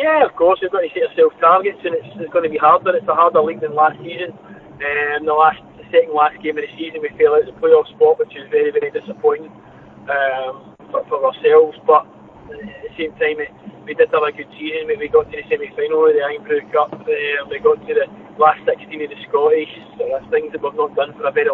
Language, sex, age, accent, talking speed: English, male, 20-39, British, 255 wpm